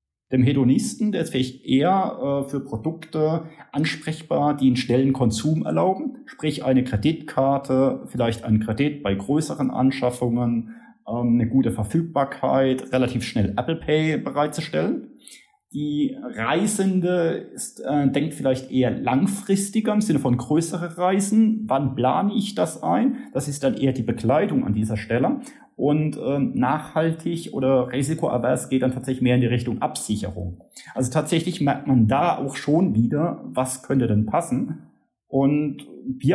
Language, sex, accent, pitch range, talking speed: German, male, German, 125-170 Hz, 145 wpm